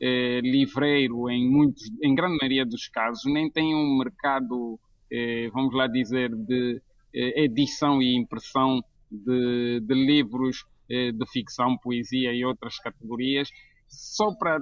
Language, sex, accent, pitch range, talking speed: Portuguese, male, Brazilian, 125-160 Hz, 140 wpm